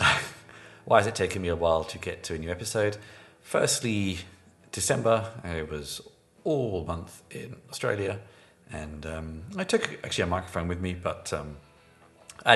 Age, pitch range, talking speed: 30-49, 85-110 Hz, 160 wpm